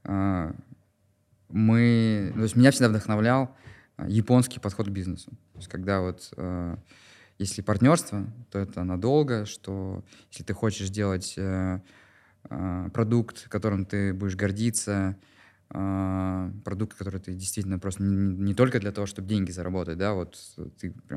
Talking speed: 125 wpm